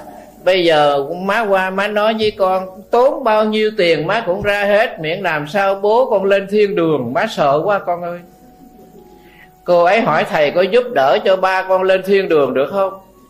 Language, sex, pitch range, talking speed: Vietnamese, male, 155-205 Hz, 200 wpm